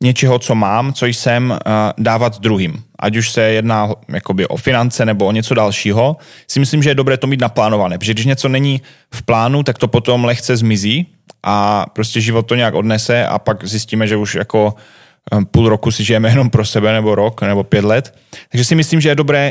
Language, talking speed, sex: Slovak, 205 wpm, male